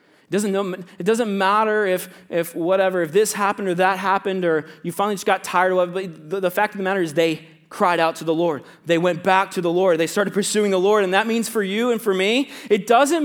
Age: 30-49